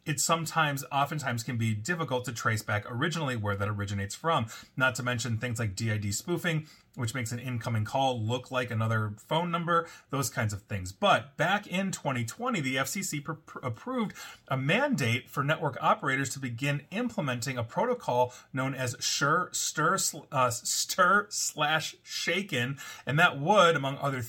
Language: English